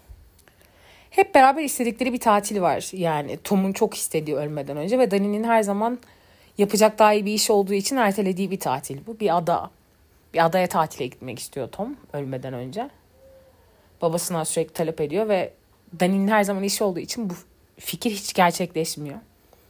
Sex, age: female, 40-59